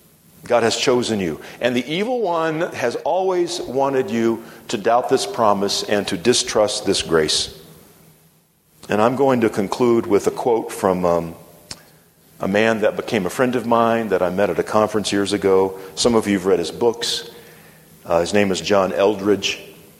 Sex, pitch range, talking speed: male, 90-125 Hz, 180 wpm